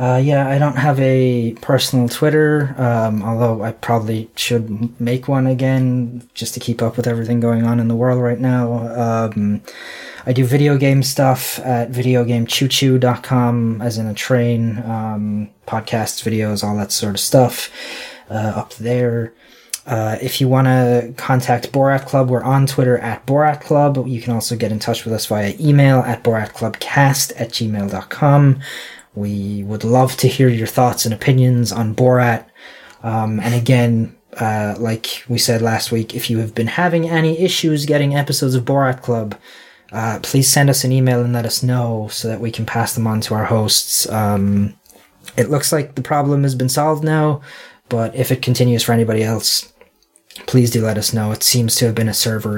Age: 20-39